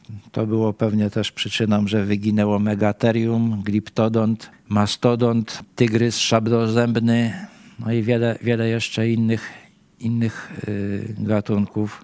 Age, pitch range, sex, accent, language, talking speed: 50-69, 105-115 Hz, male, native, Polish, 100 wpm